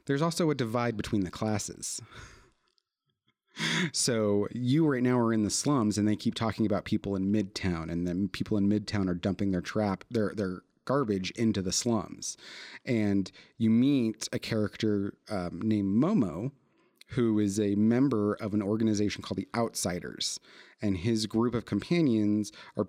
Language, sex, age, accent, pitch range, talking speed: English, male, 30-49, American, 100-120 Hz, 165 wpm